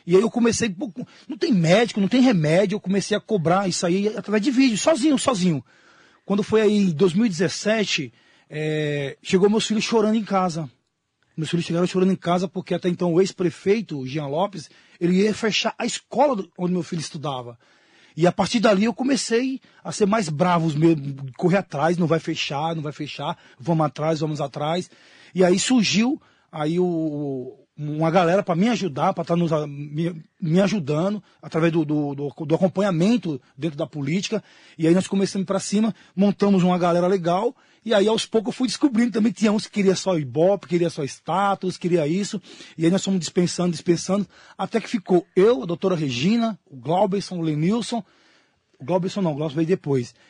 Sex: male